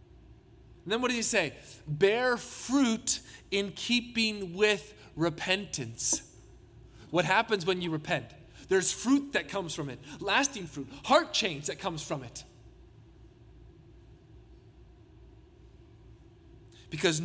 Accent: American